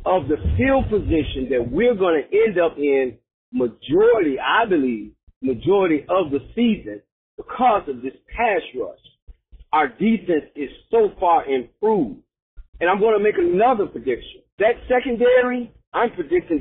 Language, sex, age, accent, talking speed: English, male, 40-59, American, 145 wpm